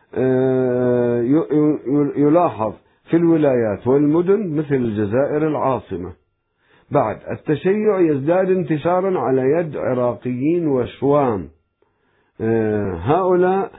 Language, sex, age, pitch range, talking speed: Arabic, male, 50-69, 95-135 Hz, 70 wpm